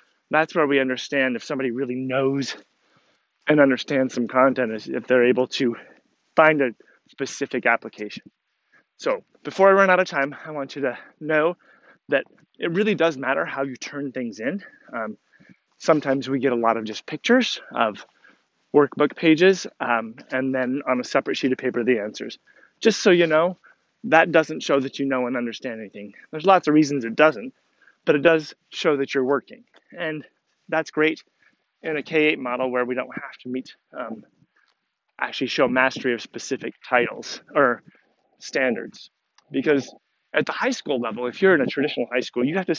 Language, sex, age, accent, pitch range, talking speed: English, male, 30-49, American, 130-155 Hz, 180 wpm